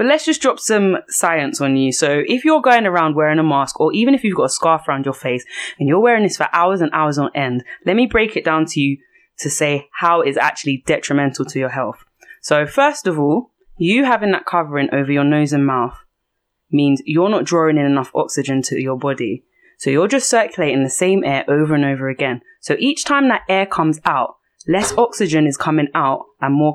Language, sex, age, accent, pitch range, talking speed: English, female, 20-39, British, 140-185 Hz, 225 wpm